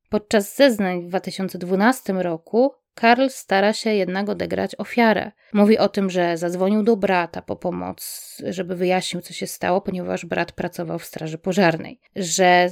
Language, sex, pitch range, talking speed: Polish, female, 180-225 Hz, 150 wpm